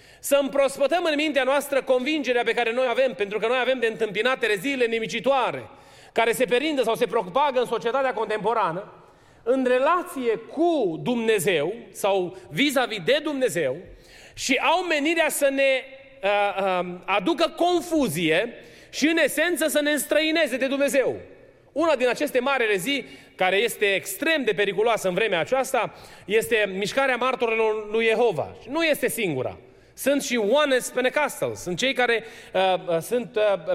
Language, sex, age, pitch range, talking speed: Romanian, male, 30-49, 205-270 Hz, 150 wpm